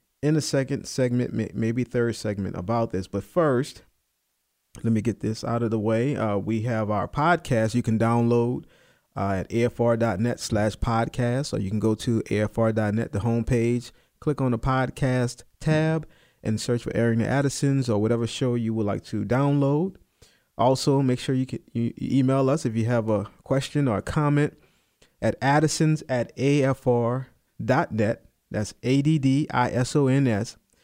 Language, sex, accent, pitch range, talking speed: English, male, American, 110-135 Hz, 155 wpm